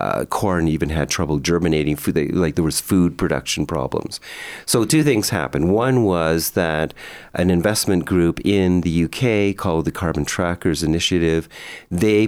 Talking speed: 150 wpm